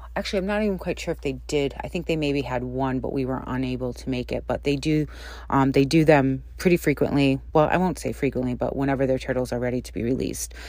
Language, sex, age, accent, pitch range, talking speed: English, female, 30-49, American, 130-155 Hz, 255 wpm